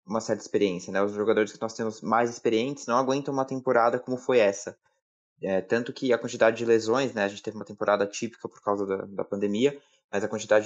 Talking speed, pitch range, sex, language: 225 wpm, 110-150 Hz, male, Portuguese